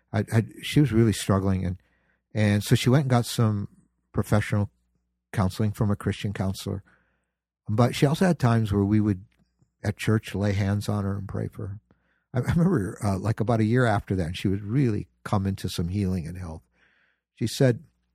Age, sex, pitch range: 50-69, male, 90-120 Hz